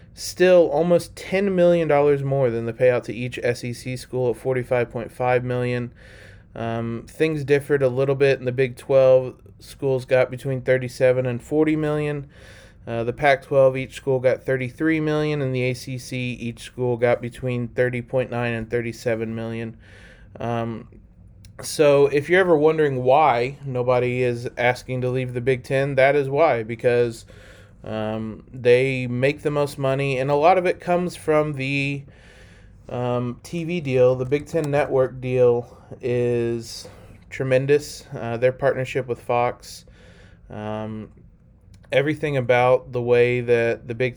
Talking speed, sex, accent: 150 wpm, male, American